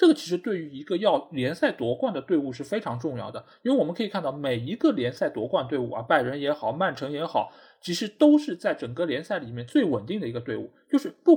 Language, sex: Chinese, male